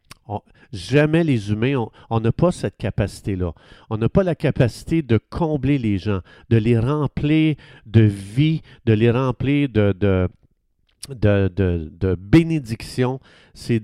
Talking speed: 130 wpm